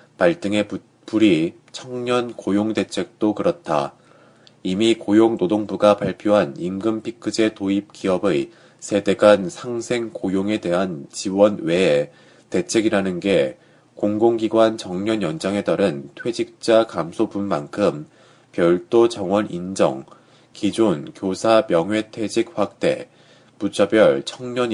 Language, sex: Korean, male